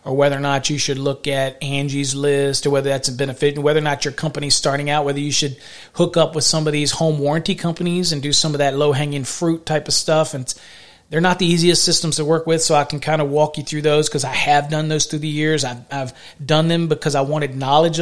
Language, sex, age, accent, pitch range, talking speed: English, male, 40-59, American, 145-175 Hz, 265 wpm